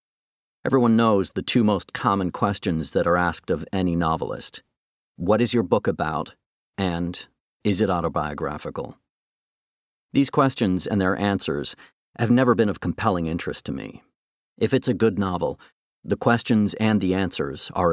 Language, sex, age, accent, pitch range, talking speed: English, male, 40-59, American, 85-115 Hz, 155 wpm